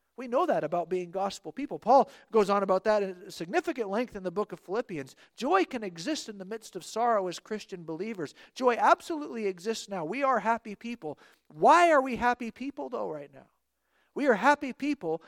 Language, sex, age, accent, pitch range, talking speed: English, male, 50-69, American, 185-235 Hz, 205 wpm